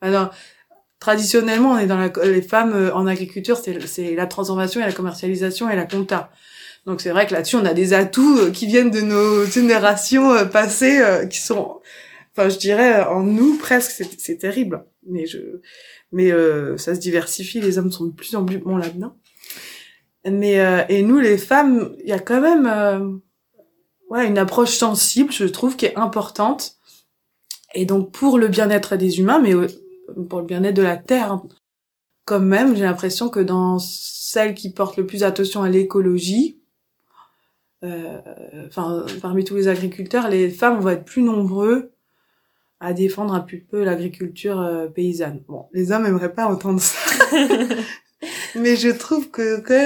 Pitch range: 185-235 Hz